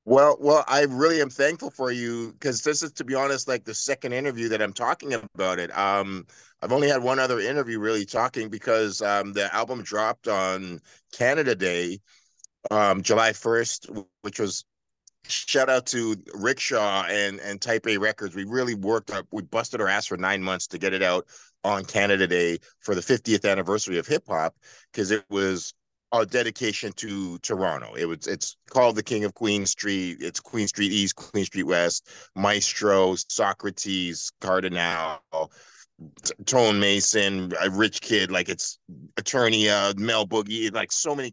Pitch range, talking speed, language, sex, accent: 95-115 Hz, 175 wpm, English, male, American